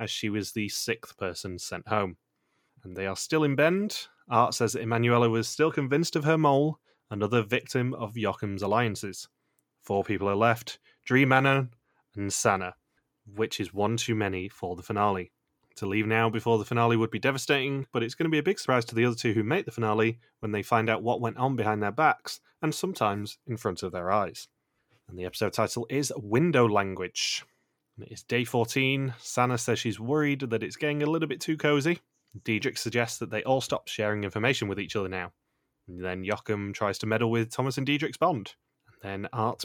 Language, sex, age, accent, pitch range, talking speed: English, male, 30-49, British, 105-135 Hz, 200 wpm